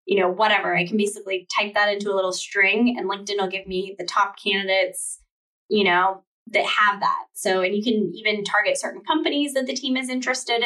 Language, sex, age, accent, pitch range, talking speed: English, female, 10-29, American, 190-230 Hz, 215 wpm